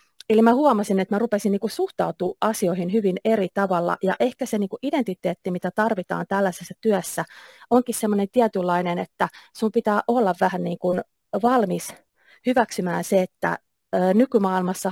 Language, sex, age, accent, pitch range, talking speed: Finnish, female, 30-49, native, 180-220 Hz, 135 wpm